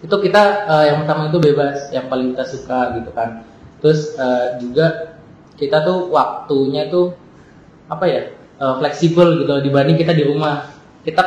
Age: 20-39